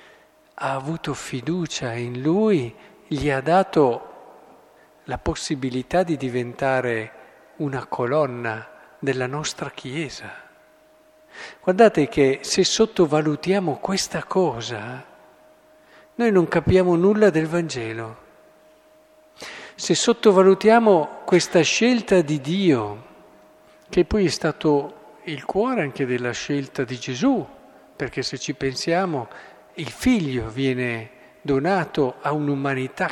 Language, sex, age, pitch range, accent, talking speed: Italian, male, 50-69, 135-200 Hz, native, 100 wpm